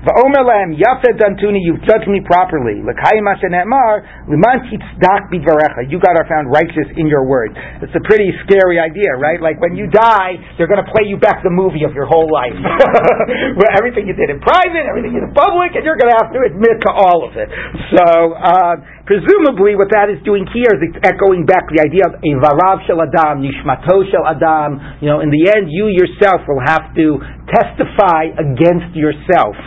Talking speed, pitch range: 165 wpm, 140-190 Hz